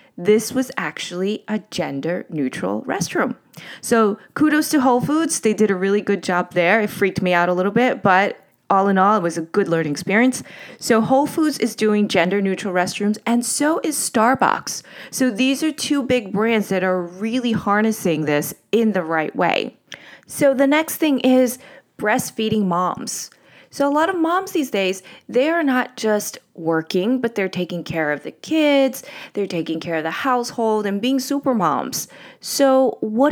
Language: English